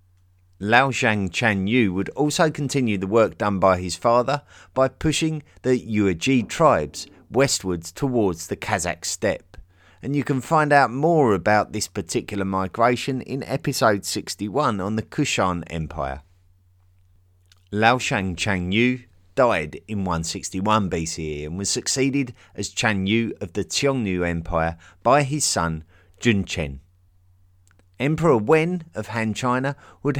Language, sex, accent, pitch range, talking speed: English, male, British, 90-120 Hz, 125 wpm